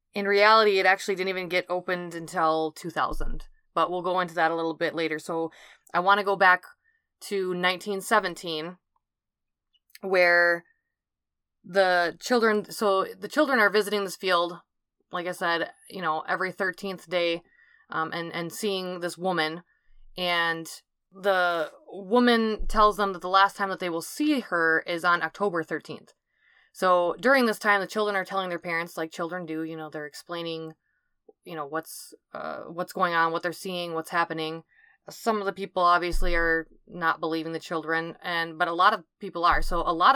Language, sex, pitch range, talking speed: English, female, 170-200 Hz, 175 wpm